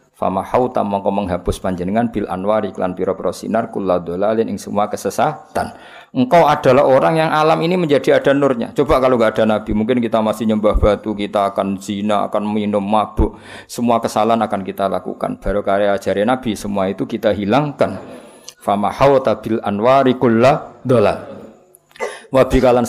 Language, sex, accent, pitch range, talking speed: Indonesian, male, native, 95-110 Hz, 150 wpm